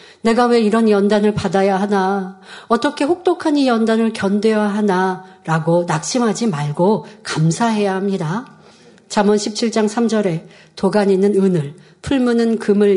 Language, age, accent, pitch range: Korean, 40-59, native, 190-245 Hz